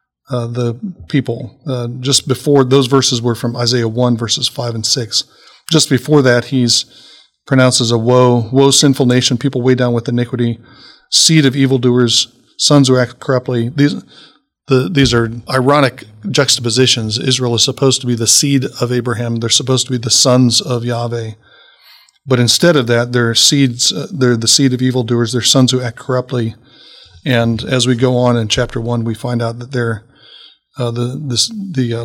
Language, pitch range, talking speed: English, 120-130 Hz, 180 wpm